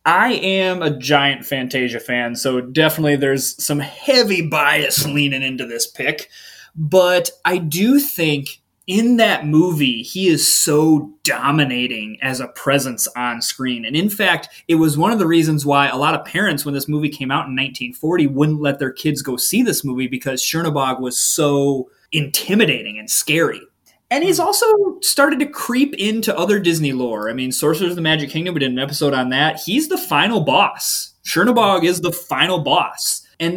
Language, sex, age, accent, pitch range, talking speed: English, male, 20-39, American, 140-210 Hz, 180 wpm